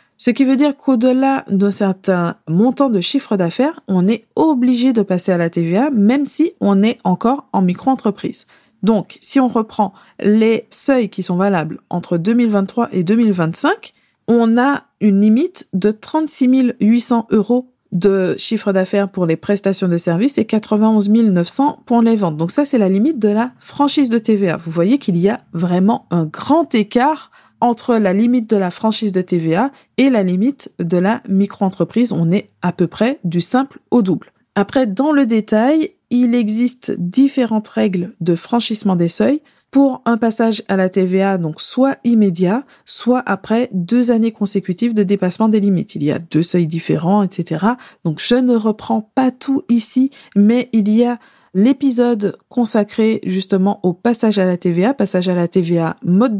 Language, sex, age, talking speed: French, female, 20-39, 175 wpm